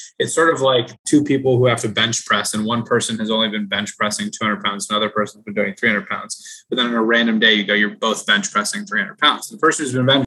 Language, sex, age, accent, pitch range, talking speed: English, male, 20-39, American, 115-165 Hz, 270 wpm